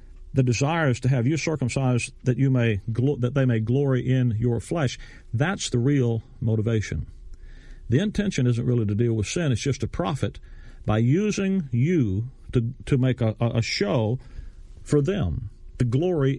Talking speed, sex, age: 170 wpm, male, 50-69